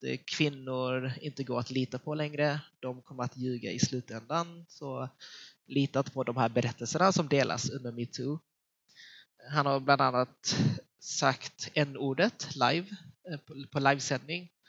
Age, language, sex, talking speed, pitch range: 20-39, English, male, 135 wpm, 125-150 Hz